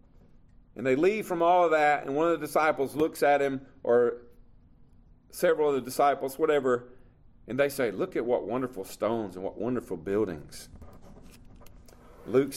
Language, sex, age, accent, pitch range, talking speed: English, male, 40-59, American, 120-155 Hz, 160 wpm